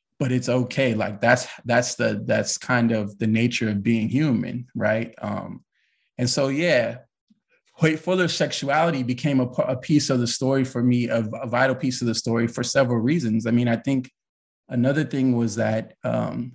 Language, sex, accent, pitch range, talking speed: English, male, American, 110-130 Hz, 190 wpm